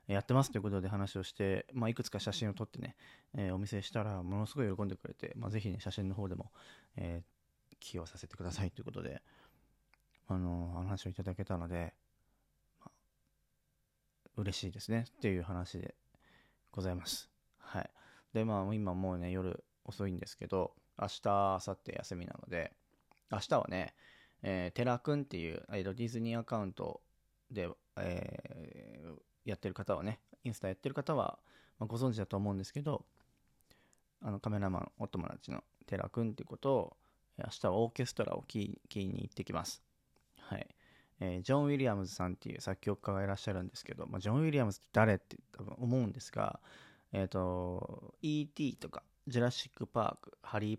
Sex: male